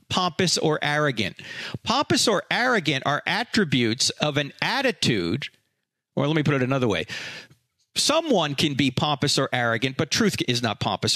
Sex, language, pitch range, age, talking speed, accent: male, English, 145-225 Hz, 40-59, 155 wpm, American